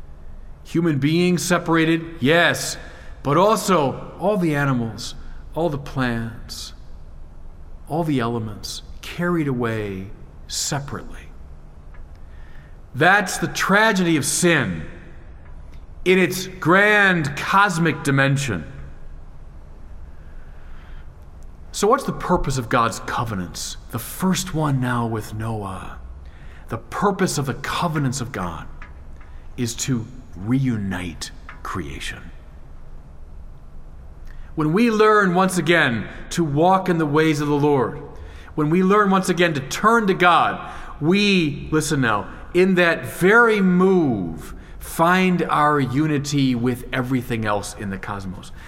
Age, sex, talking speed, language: 40-59, male, 110 wpm, English